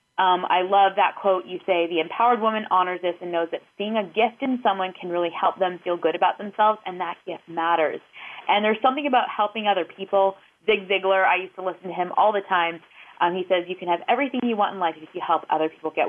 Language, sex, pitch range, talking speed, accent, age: English, female, 170-205 Hz, 250 wpm, American, 20-39